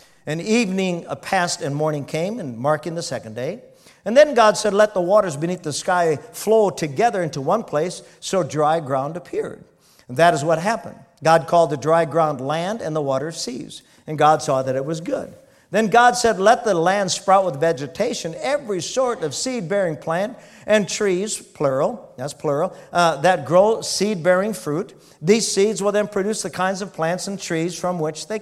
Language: English